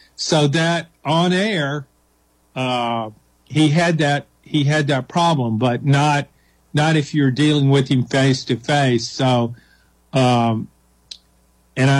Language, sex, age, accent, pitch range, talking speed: English, male, 50-69, American, 130-160 Hz, 130 wpm